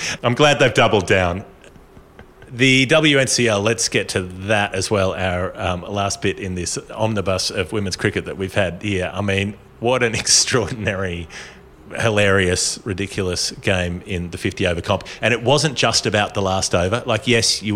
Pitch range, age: 85-105 Hz, 30-49